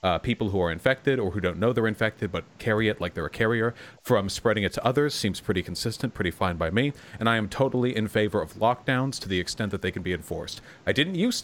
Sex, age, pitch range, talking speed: male, 30-49, 100-125 Hz, 255 wpm